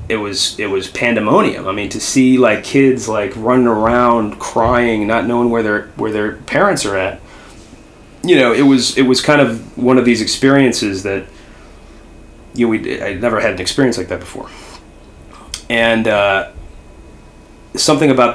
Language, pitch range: English, 100-125 Hz